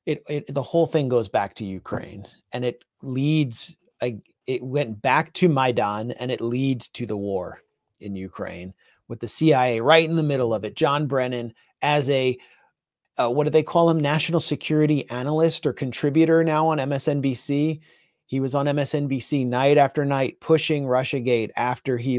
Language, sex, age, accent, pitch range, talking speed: English, male, 30-49, American, 125-155 Hz, 170 wpm